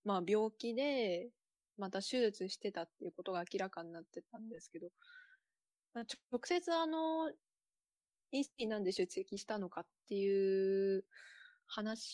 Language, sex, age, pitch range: Japanese, female, 20-39, 185-250 Hz